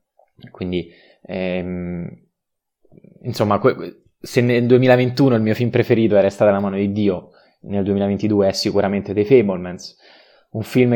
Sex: male